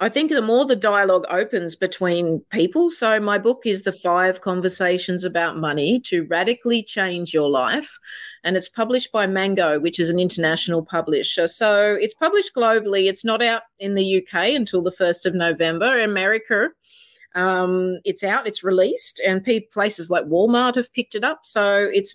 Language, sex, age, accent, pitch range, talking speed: English, female, 30-49, Australian, 180-235 Hz, 175 wpm